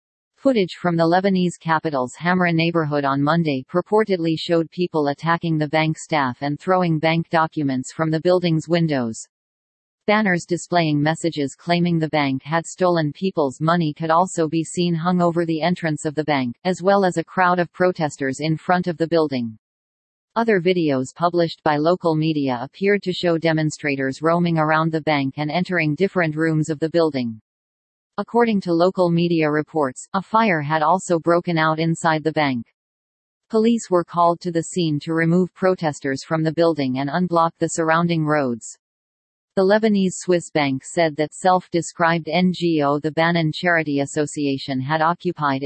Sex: female